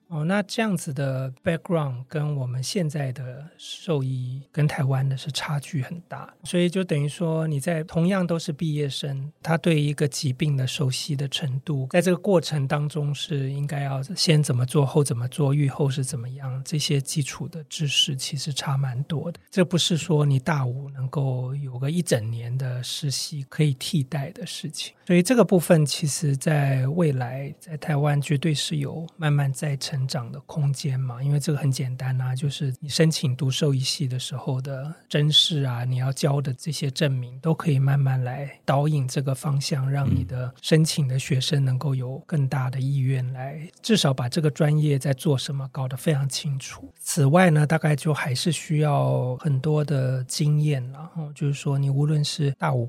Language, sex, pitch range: Chinese, male, 135-155 Hz